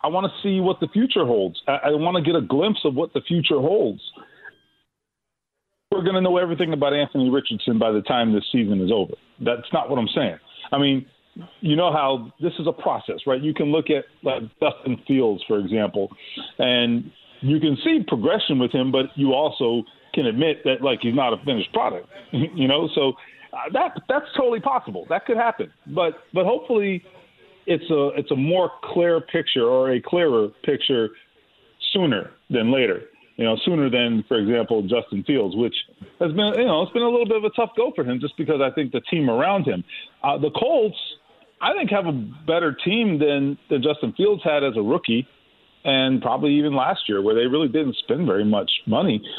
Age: 40-59